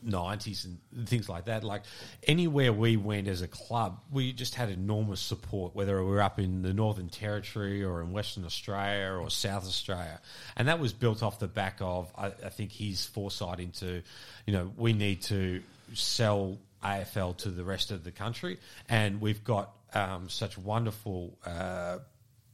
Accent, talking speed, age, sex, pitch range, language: Australian, 175 wpm, 40-59, male, 95-110 Hz, English